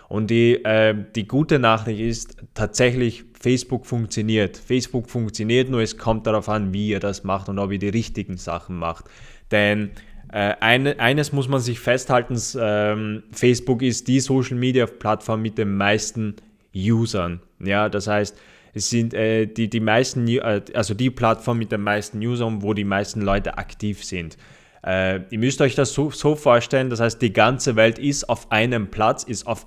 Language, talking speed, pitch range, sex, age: German, 175 wpm, 105-120 Hz, male, 20-39